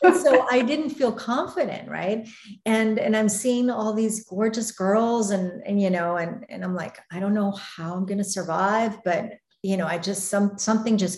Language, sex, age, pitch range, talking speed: English, female, 50-69, 165-215 Hz, 200 wpm